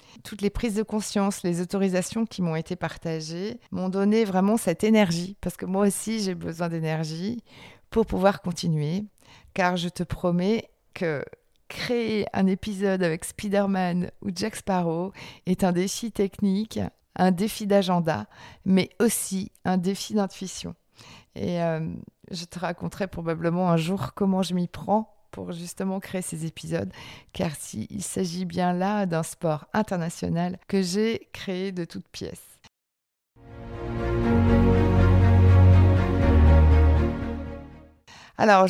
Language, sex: French, female